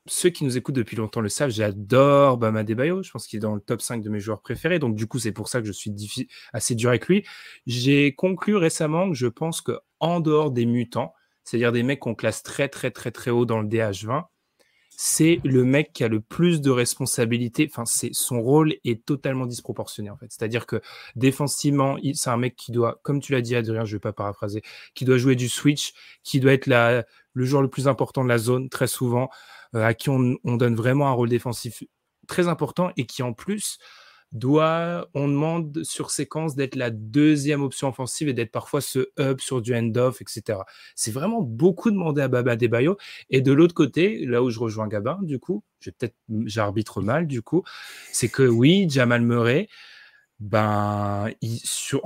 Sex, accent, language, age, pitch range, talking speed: male, French, French, 20-39, 115-145 Hz, 210 wpm